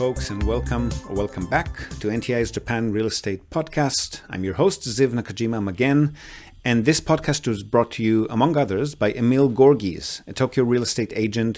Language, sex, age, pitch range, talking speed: English, male, 40-59, 105-130 Hz, 180 wpm